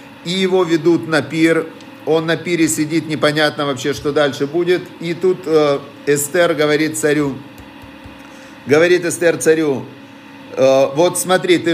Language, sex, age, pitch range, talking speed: Russian, male, 50-69, 140-175 Hz, 140 wpm